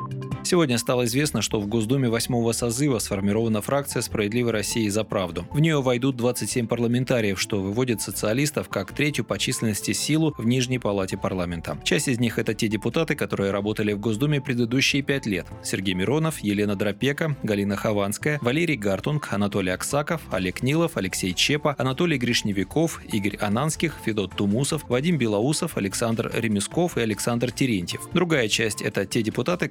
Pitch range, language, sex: 105-140 Hz, Russian, male